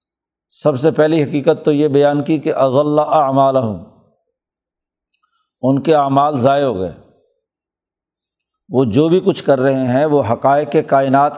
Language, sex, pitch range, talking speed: Urdu, male, 135-155 Hz, 150 wpm